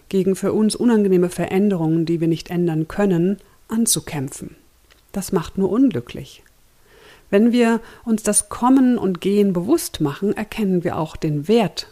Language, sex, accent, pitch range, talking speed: German, female, German, 165-215 Hz, 145 wpm